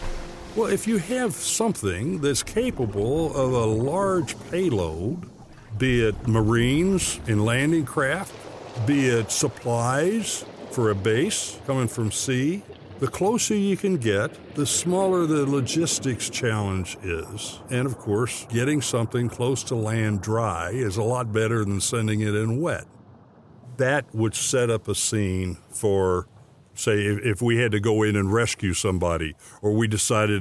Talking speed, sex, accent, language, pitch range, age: 150 wpm, male, American, English, 105-135 Hz, 60-79